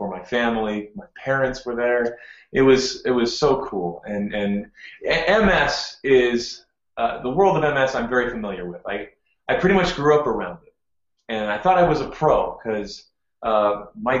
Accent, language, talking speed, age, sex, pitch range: American, English, 175 wpm, 30-49, male, 105-130 Hz